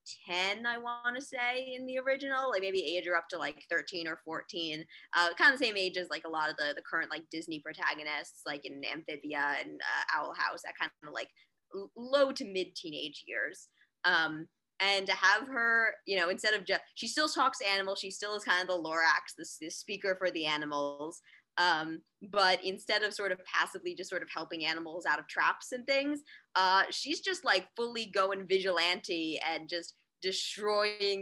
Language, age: English, 20-39